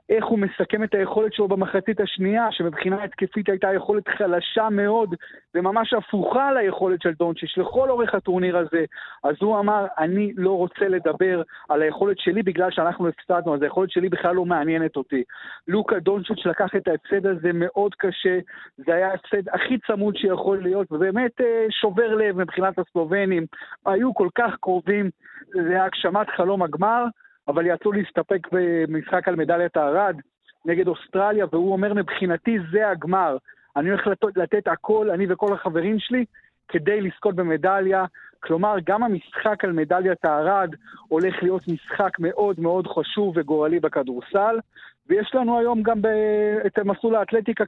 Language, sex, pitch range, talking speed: Hebrew, male, 175-210 Hz, 145 wpm